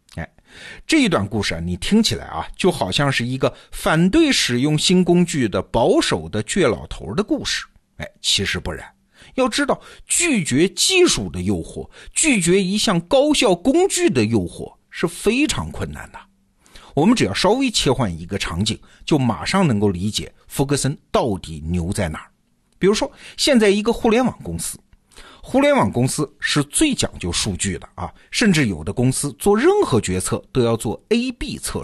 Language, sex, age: Chinese, male, 50-69